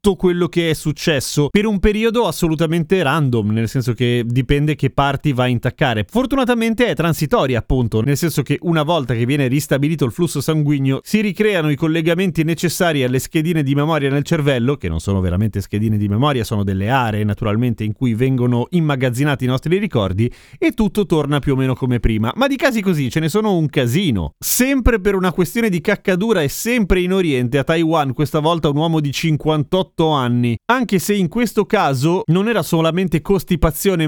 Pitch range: 140-180 Hz